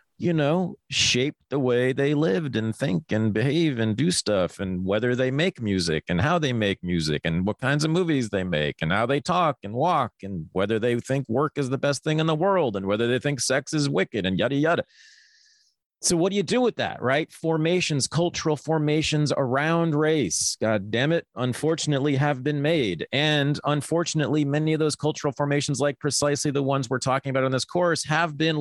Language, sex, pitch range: English, male, 110-150 Hz